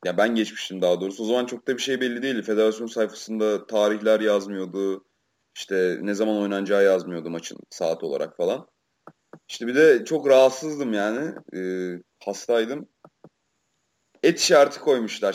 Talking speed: 150 wpm